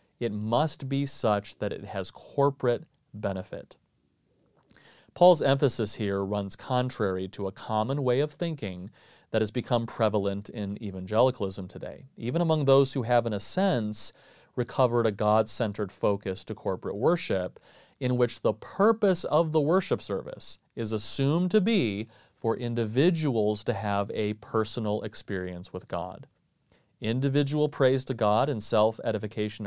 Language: English